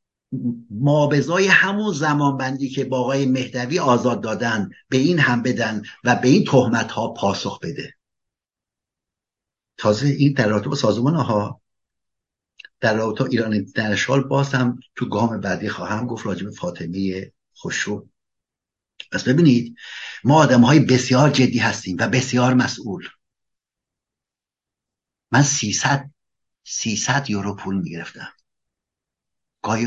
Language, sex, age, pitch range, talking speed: Persian, male, 60-79, 105-130 Hz, 115 wpm